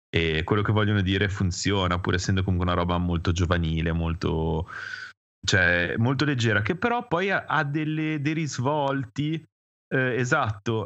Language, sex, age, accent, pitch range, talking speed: Italian, male, 30-49, native, 100-145 Hz, 150 wpm